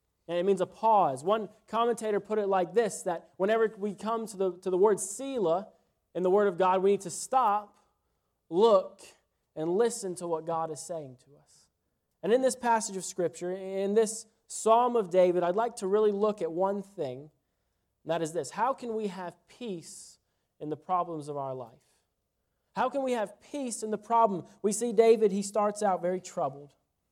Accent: American